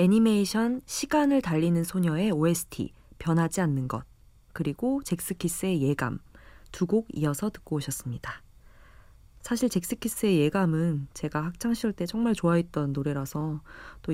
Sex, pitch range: female, 150-200 Hz